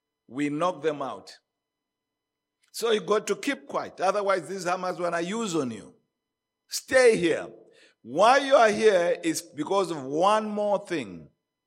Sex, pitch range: male, 145-205 Hz